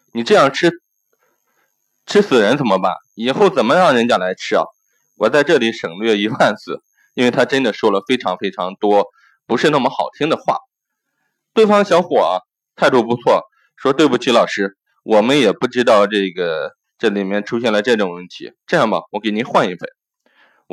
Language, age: Chinese, 20-39